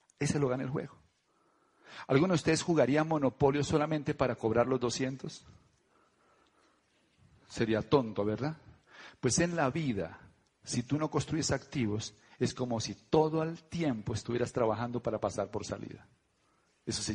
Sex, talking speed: male, 145 wpm